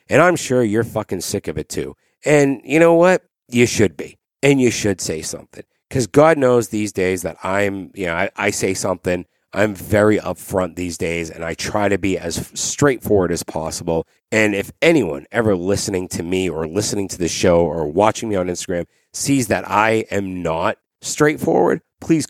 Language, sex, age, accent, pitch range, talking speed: English, male, 40-59, American, 95-155 Hz, 195 wpm